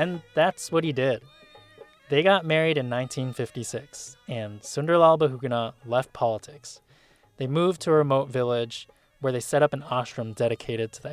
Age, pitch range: 20-39, 120-150 Hz